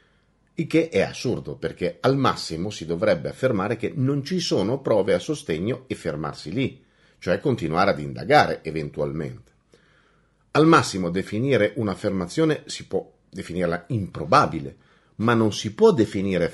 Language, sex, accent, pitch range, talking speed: Italian, male, native, 85-140 Hz, 140 wpm